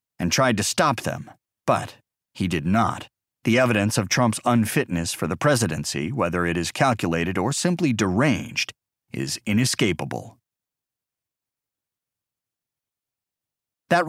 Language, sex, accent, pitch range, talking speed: English, male, American, 105-135 Hz, 115 wpm